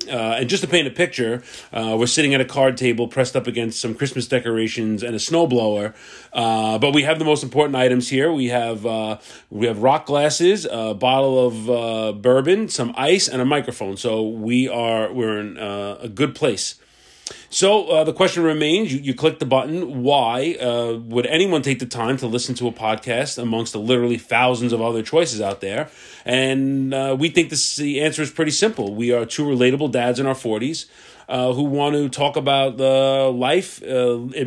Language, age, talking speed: English, 30-49, 200 wpm